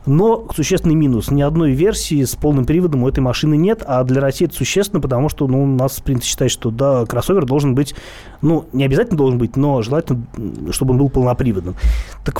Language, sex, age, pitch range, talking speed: Russian, male, 30-49, 110-140 Hz, 205 wpm